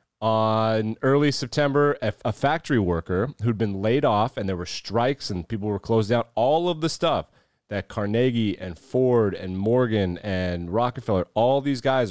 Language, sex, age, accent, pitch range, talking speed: English, male, 30-49, American, 95-120 Hz, 180 wpm